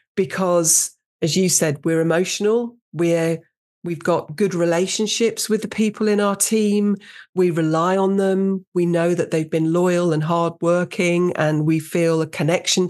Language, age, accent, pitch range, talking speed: English, 40-59, British, 160-200 Hz, 165 wpm